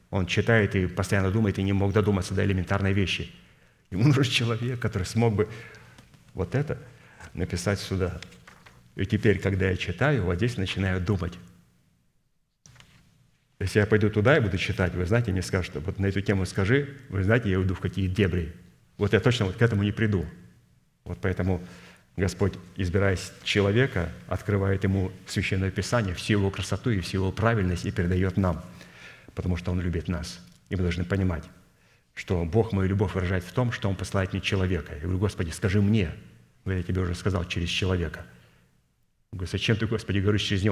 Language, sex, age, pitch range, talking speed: Russian, male, 30-49, 90-105 Hz, 180 wpm